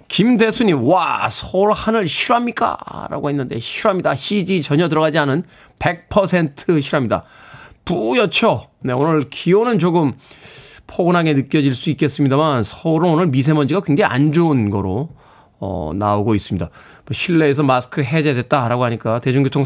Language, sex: Korean, male